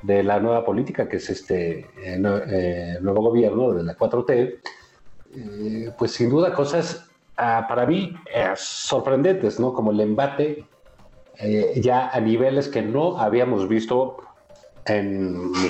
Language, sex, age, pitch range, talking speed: Spanish, male, 40-59, 100-145 Hz, 150 wpm